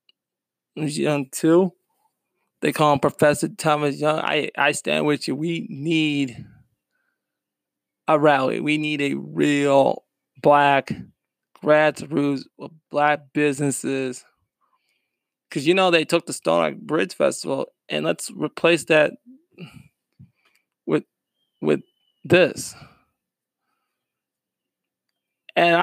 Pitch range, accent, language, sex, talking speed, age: 140-165 Hz, American, English, male, 100 wpm, 20-39